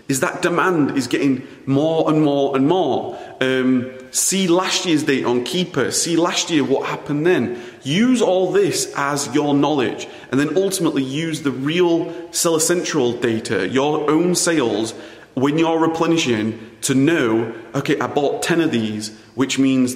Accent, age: British, 30-49